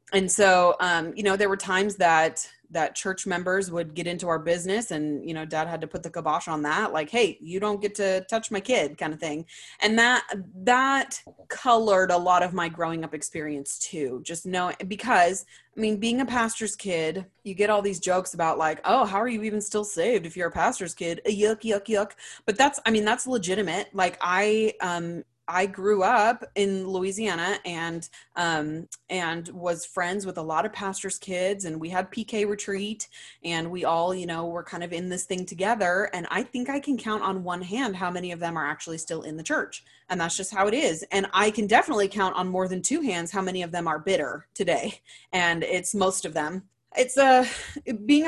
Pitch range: 170-210 Hz